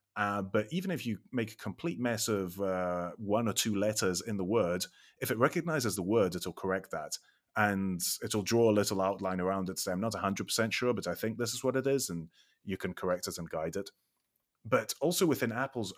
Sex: male